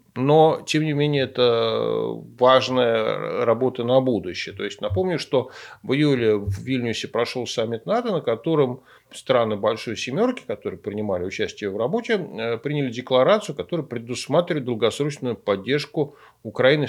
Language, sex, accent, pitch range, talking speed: Russian, male, native, 115-145 Hz, 130 wpm